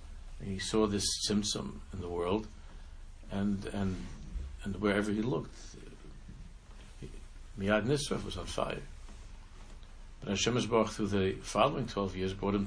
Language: English